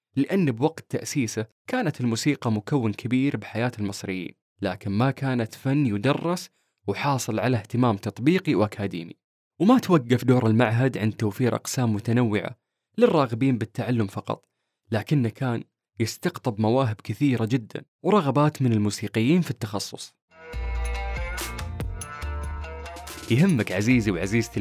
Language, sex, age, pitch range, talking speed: Arabic, male, 20-39, 105-140 Hz, 105 wpm